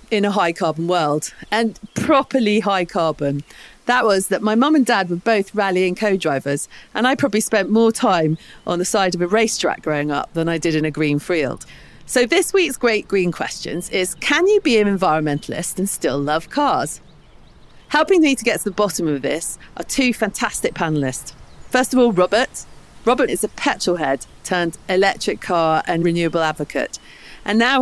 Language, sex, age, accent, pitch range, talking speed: English, female, 40-59, British, 160-230 Hz, 190 wpm